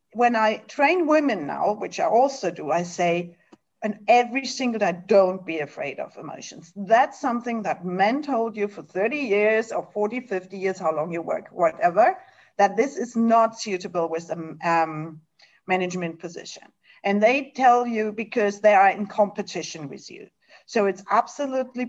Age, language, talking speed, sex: 50-69, English, 165 wpm, female